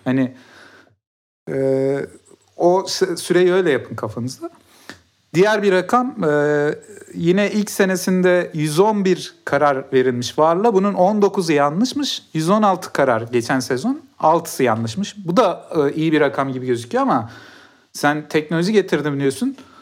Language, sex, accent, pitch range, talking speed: Turkish, male, native, 135-185 Hz, 120 wpm